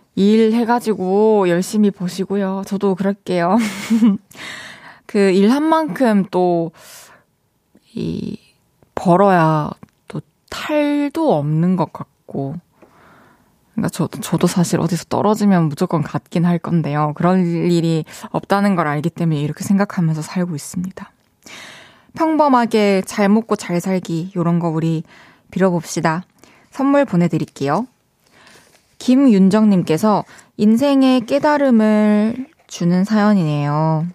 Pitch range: 165-210 Hz